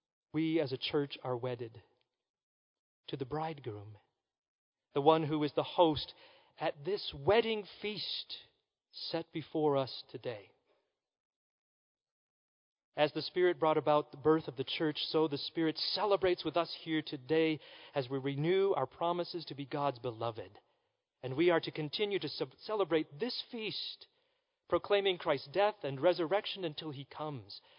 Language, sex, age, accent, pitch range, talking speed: English, male, 40-59, American, 130-165 Hz, 145 wpm